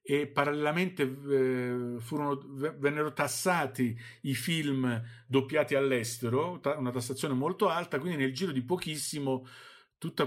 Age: 50-69